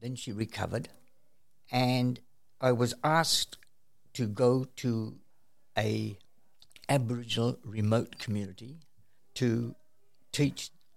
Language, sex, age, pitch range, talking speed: English, male, 60-79, 105-130 Hz, 90 wpm